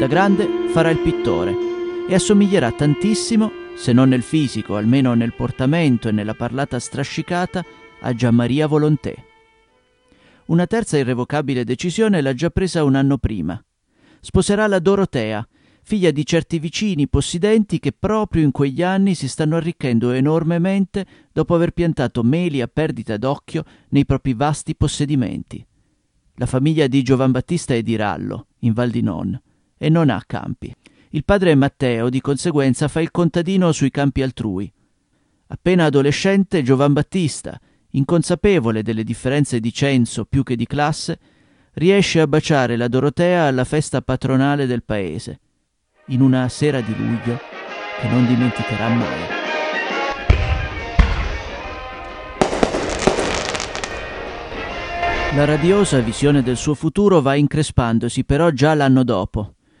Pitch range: 125-170 Hz